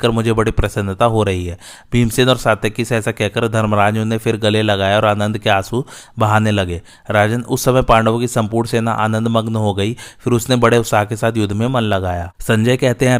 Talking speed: 120 wpm